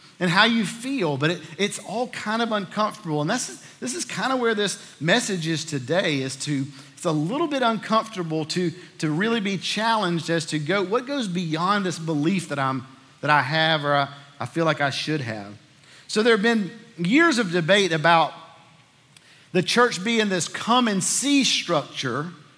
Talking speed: 190 wpm